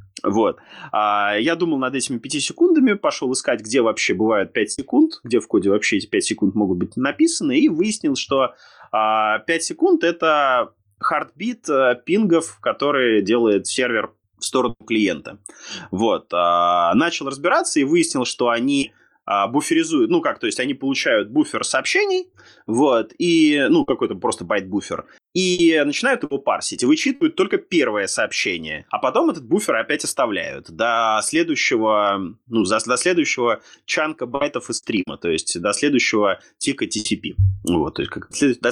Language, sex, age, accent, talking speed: Russian, male, 20-39, native, 150 wpm